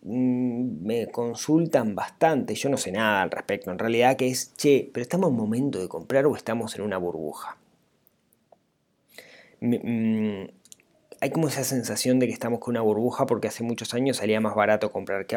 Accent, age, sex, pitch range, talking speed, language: Argentinian, 20-39, male, 110-140 Hz, 170 wpm, Spanish